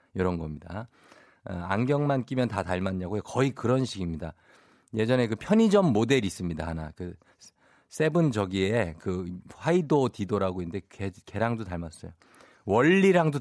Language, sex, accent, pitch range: Korean, male, native, 110-175 Hz